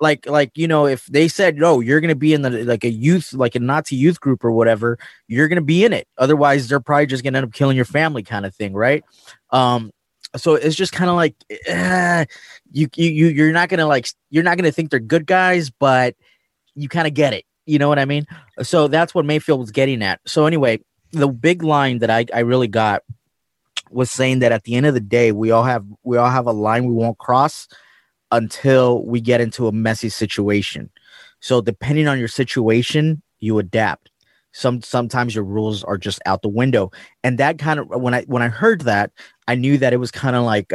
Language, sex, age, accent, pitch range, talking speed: English, male, 20-39, American, 120-150 Hz, 230 wpm